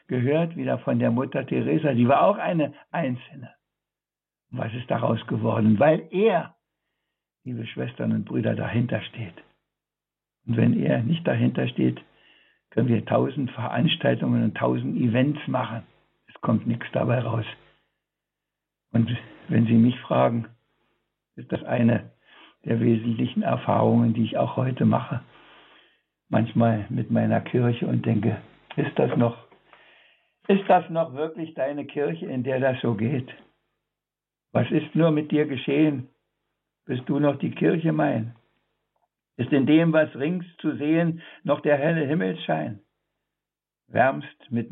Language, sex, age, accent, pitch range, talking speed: German, male, 60-79, German, 115-150 Hz, 140 wpm